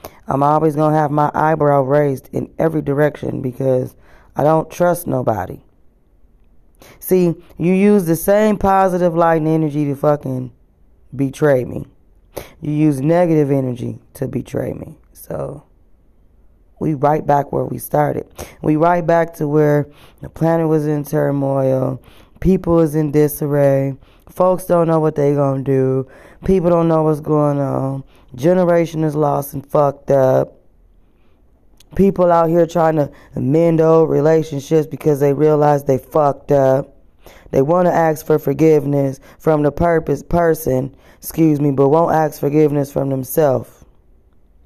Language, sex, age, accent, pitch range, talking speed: English, female, 20-39, American, 135-160 Hz, 140 wpm